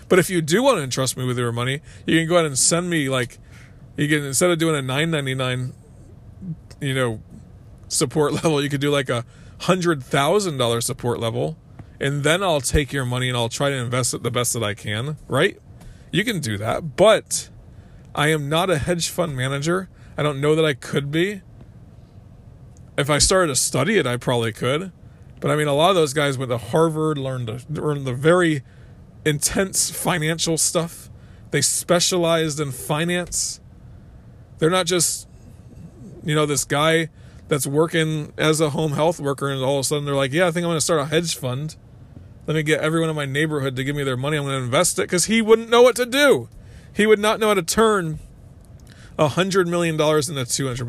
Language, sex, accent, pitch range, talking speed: English, male, American, 125-160 Hz, 205 wpm